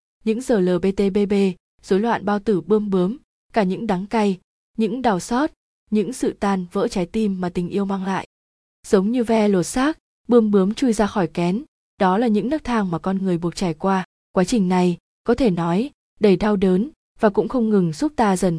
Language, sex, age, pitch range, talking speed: Vietnamese, female, 20-39, 185-225 Hz, 210 wpm